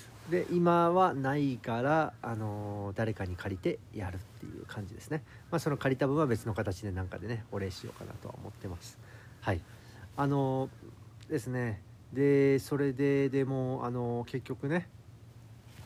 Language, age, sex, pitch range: Japanese, 40-59, male, 105-135 Hz